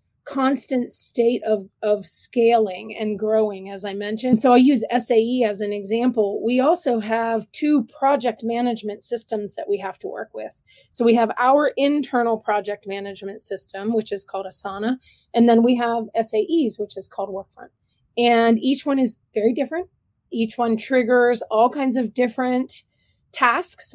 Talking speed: 165 wpm